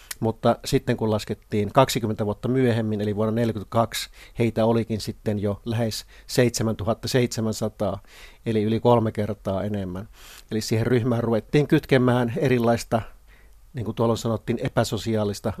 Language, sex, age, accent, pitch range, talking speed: Finnish, male, 30-49, native, 105-120 Hz, 125 wpm